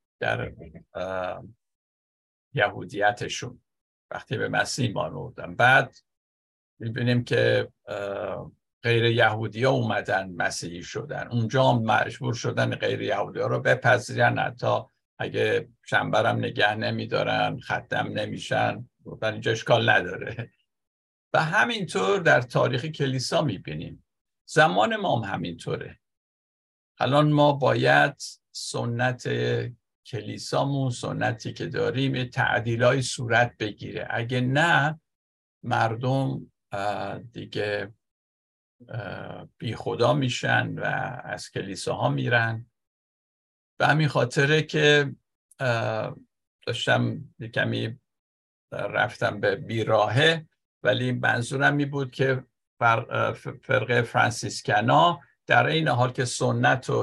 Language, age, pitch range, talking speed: Persian, 50-69, 105-135 Hz, 100 wpm